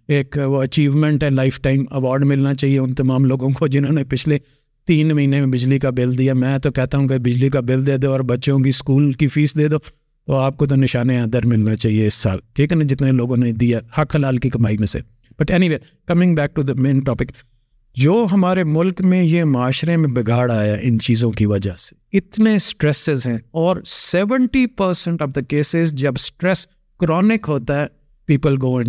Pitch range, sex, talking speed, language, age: 125-155 Hz, male, 215 wpm, Urdu, 50-69